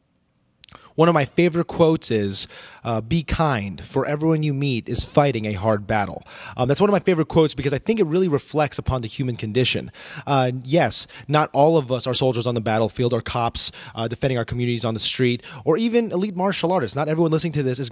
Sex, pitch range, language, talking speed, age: male, 120-155 Hz, English, 220 wpm, 20-39